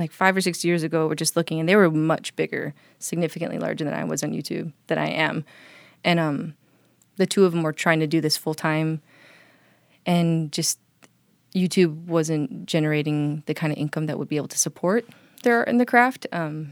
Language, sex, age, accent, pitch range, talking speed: English, female, 20-39, American, 155-175 Hz, 210 wpm